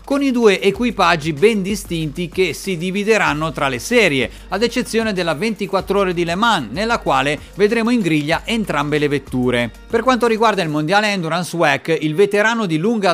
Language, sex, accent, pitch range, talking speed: Italian, male, native, 150-210 Hz, 180 wpm